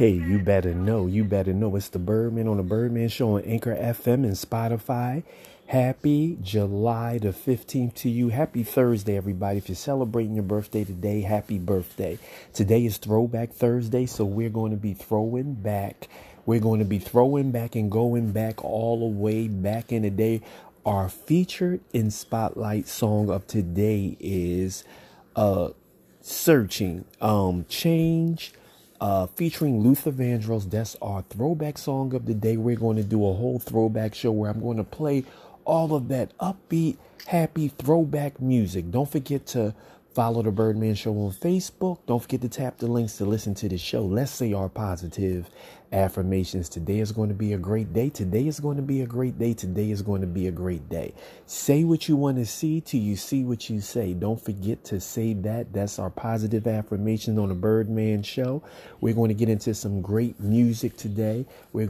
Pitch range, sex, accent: 105-130 Hz, male, American